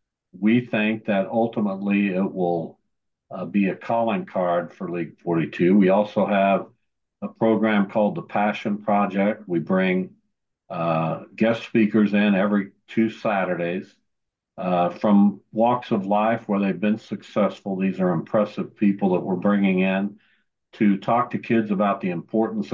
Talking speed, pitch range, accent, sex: 150 wpm, 100-110 Hz, American, male